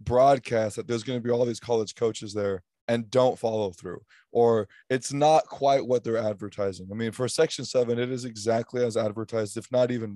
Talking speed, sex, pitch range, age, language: 205 wpm, male, 110-145 Hz, 20-39, English